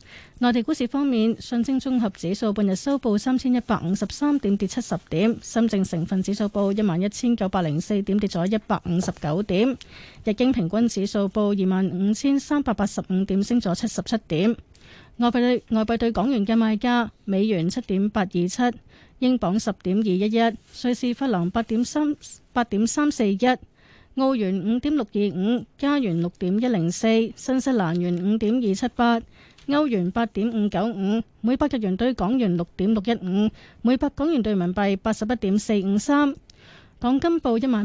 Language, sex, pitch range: Chinese, female, 195-245 Hz